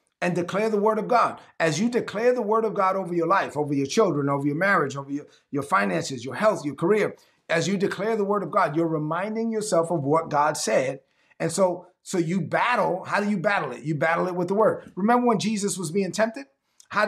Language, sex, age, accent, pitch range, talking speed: English, male, 30-49, American, 155-205 Hz, 235 wpm